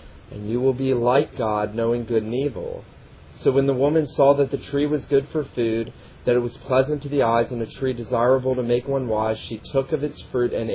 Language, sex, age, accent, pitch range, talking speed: English, male, 40-59, American, 110-135 Hz, 240 wpm